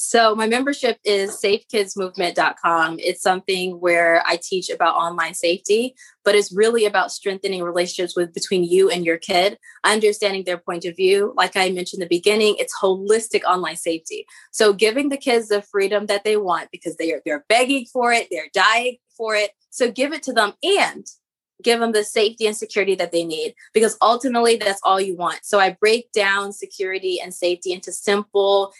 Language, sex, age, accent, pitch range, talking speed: English, female, 20-39, American, 180-215 Hz, 190 wpm